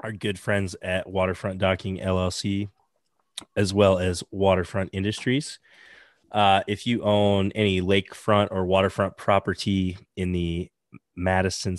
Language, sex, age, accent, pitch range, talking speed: English, male, 20-39, American, 90-105 Hz, 120 wpm